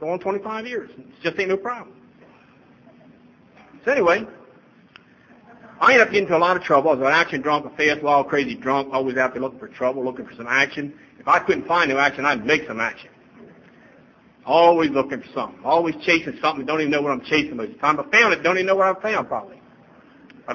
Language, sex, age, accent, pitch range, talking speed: English, male, 50-69, American, 135-165 Hz, 225 wpm